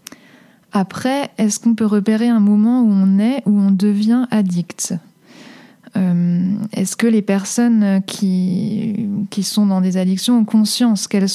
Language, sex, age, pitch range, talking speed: French, female, 20-39, 190-220 Hz, 150 wpm